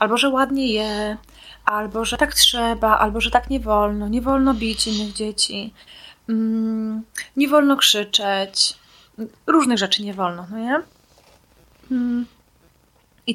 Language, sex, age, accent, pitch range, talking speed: Polish, female, 20-39, native, 210-250 Hz, 125 wpm